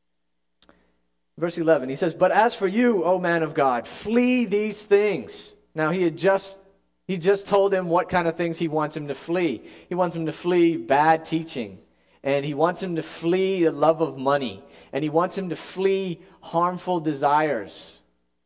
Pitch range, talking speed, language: 135-190 Hz, 185 wpm, English